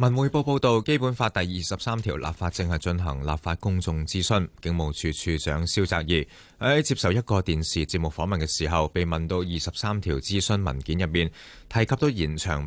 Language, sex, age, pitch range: Chinese, male, 30-49, 75-100 Hz